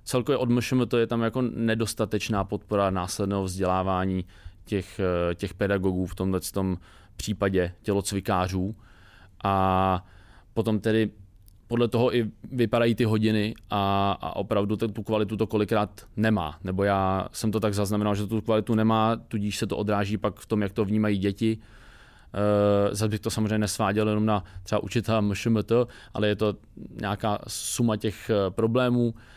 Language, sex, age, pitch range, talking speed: Czech, male, 20-39, 95-115 Hz, 145 wpm